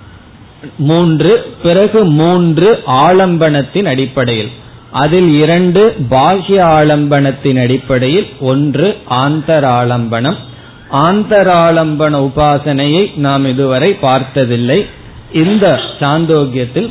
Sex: male